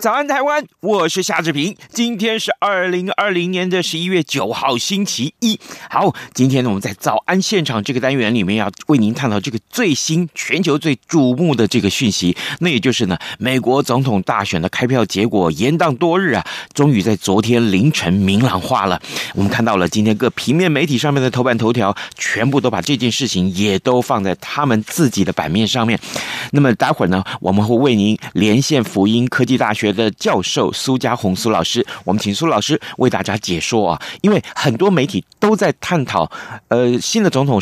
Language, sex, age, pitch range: Chinese, male, 30-49, 100-150 Hz